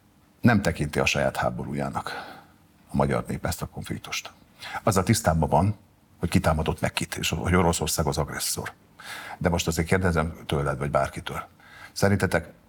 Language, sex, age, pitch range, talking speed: Hungarian, male, 50-69, 80-90 Hz, 140 wpm